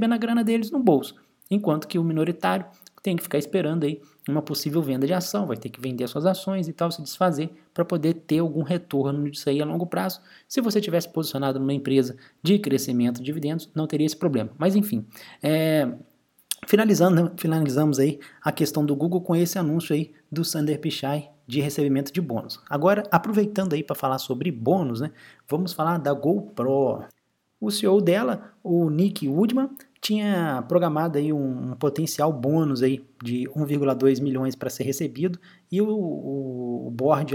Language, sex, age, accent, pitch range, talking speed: English, male, 20-39, Brazilian, 135-175 Hz, 170 wpm